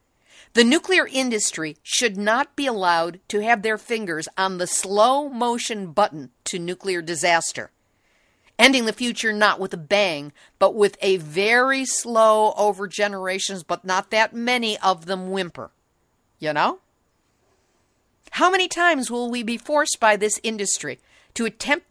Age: 50-69